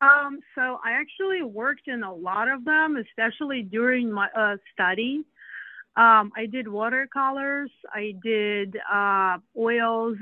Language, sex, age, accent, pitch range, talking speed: English, female, 30-49, American, 205-250 Hz, 135 wpm